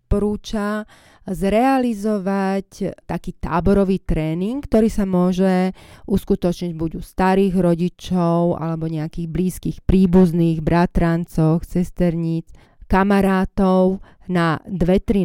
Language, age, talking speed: Slovak, 30-49, 90 wpm